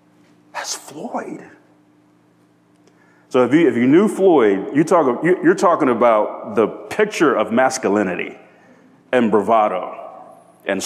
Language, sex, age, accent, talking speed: English, male, 40-59, American, 115 wpm